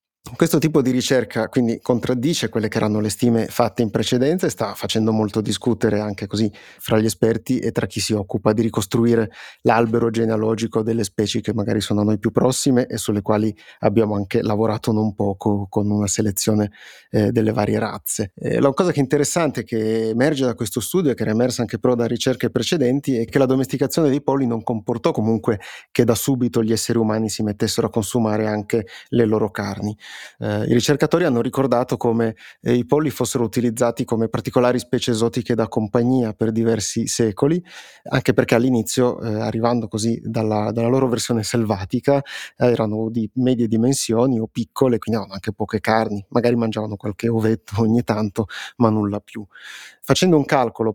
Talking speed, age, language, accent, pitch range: 185 wpm, 30-49, Italian, native, 110-125 Hz